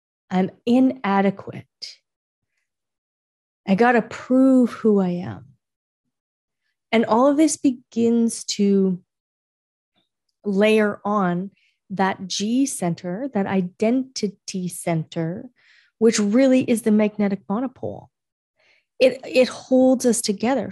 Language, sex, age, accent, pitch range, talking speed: English, female, 30-49, American, 190-240 Hz, 100 wpm